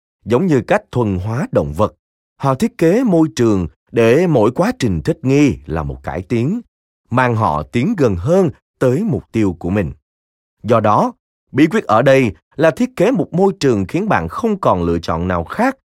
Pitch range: 90-145 Hz